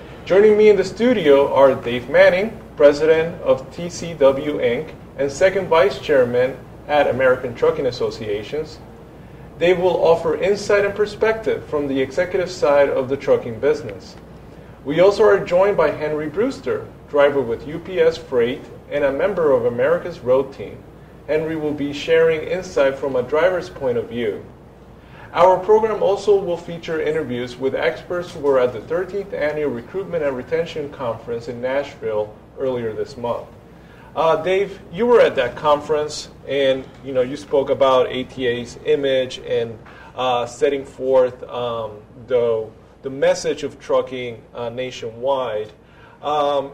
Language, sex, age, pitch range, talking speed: English, male, 30-49, 135-215 Hz, 145 wpm